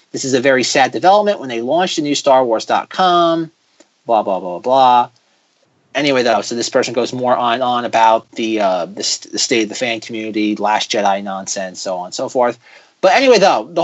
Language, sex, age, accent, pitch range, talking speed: English, male, 30-49, American, 130-170 Hz, 215 wpm